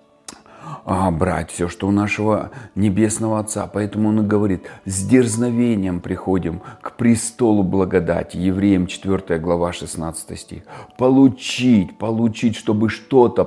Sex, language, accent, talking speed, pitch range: male, Russian, native, 115 wpm, 90-110 Hz